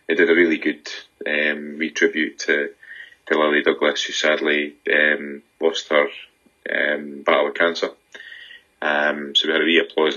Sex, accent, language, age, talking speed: male, British, English, 20-39, 165 wpm